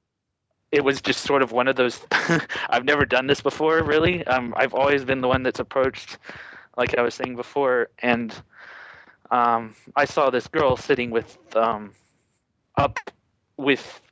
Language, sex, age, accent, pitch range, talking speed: English, male, 20-39, American, 115-135 Hz, 160 wpm